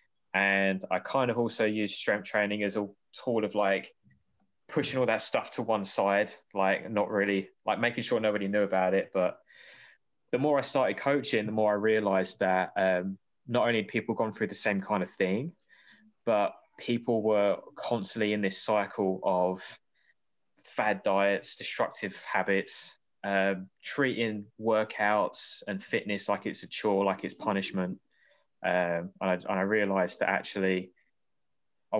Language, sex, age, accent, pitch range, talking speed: English, male, 20-39, British, 95-105 Hz, 160 wpm